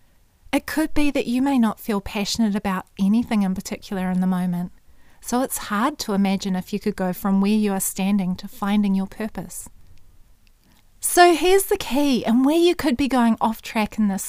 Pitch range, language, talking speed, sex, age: 195-245 Hz, English, 200 wpm, female, 30-49